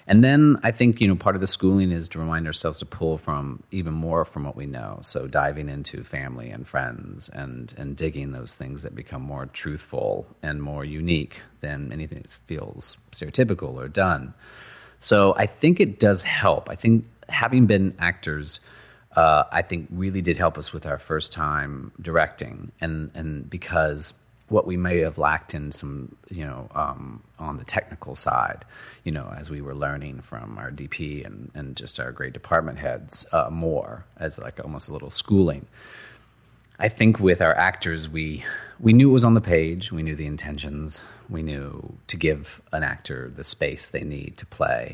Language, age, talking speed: English, 40-59, 190 wpm